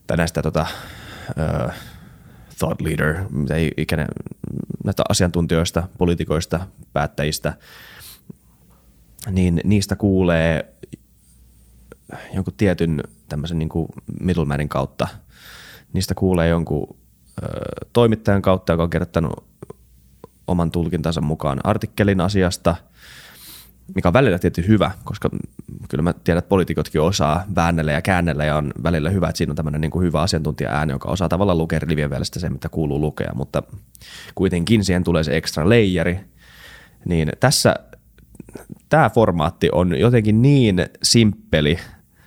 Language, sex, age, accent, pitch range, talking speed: Finnish, male, 20-39, native, 75-95 Hz, 120 wpm